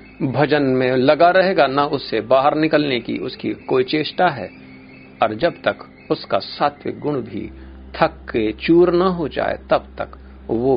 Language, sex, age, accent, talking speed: Hindi, male, 50-69, native, 160 wpm